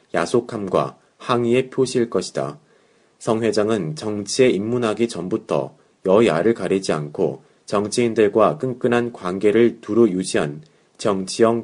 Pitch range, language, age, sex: 100-120 Hz, Korean, 30-49, male